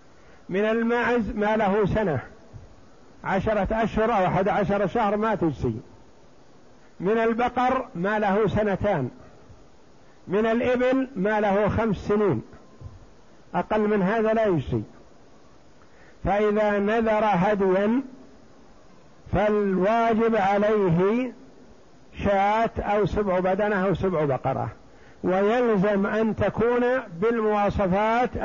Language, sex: Arabic, male